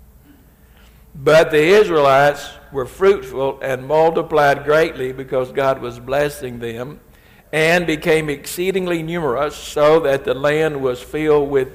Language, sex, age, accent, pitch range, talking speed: English, male, 60-79, American, 125-150 Hz, 125 wpm